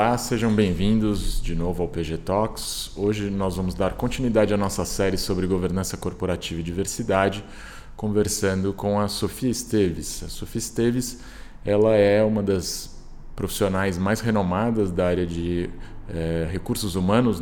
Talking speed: 145 wpm